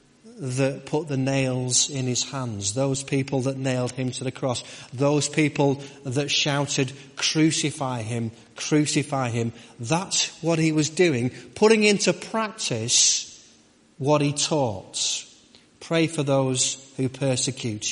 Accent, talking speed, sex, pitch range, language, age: British, 130 wpm, male, 120-145 Hz, English, 30-49